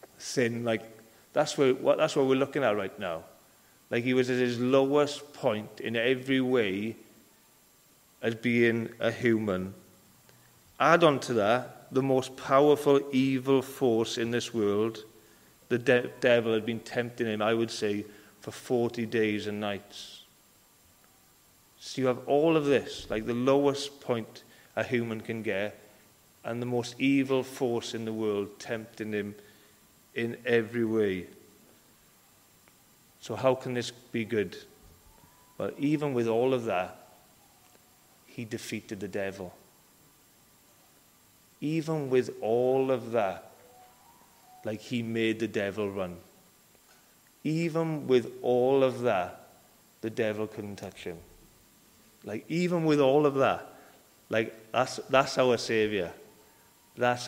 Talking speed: 135 wpm